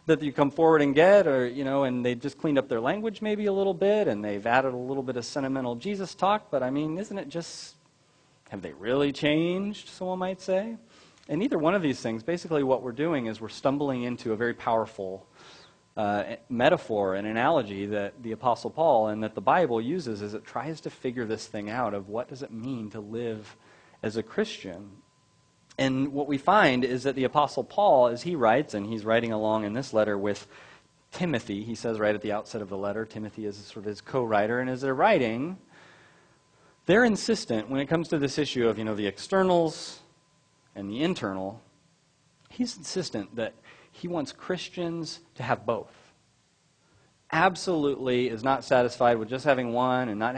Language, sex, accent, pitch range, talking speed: English, male, American, 110-165 Hz, 200 wpm